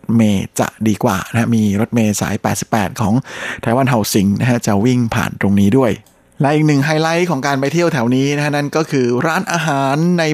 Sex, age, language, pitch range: male, 20-39, Thai, 115-140 Hz